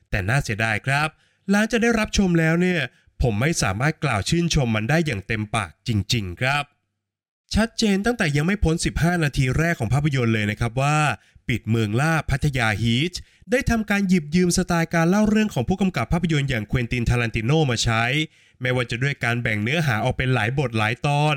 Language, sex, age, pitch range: Thai, male, 20-39, 120-175 Hz